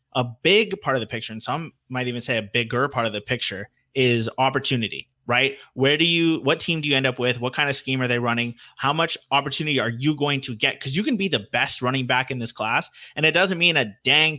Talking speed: 260 wpm